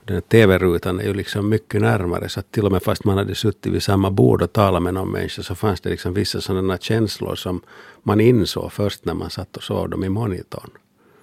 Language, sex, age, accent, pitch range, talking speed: Finnish, male, 50-69, native, 95-110 Hz, 225 wpm